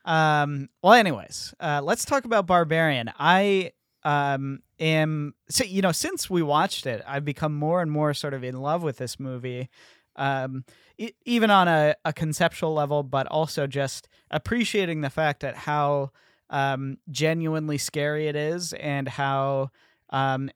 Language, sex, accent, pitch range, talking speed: English, male, American, 135-160 Hz, 155 wpm